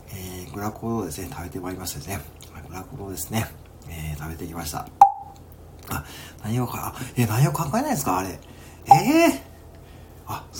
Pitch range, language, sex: 85-125 Hz, Japanese, male